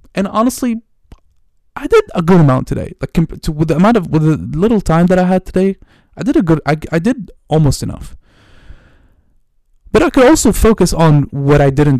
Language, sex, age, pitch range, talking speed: English, male, 20-39, 125-165 Hz, 200 wpm